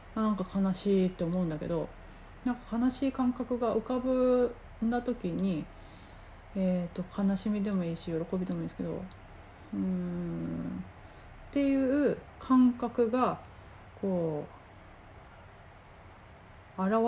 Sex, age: female, 40-59